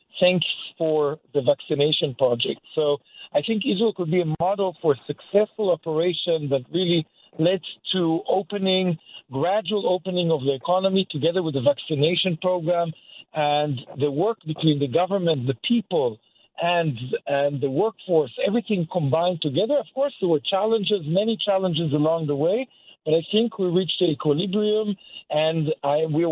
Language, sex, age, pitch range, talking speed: English, male, 50-69, 160-200 Hz, 150 wpm